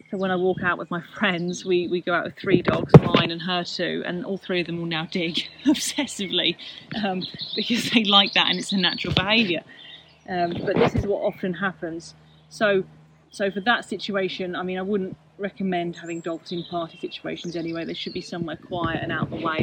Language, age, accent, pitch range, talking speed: English, 30-49, British, 170-190 Hz, 215 wpm